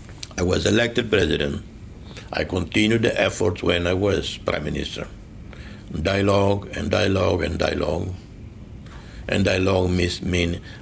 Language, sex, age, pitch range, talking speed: English, male, 60-79, 85-105 Hz, 115 wpm